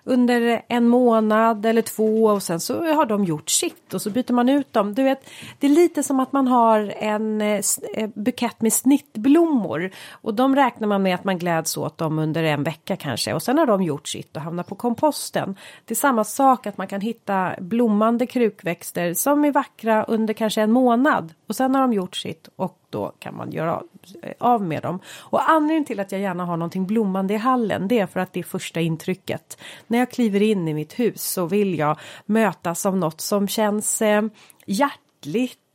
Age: 30-49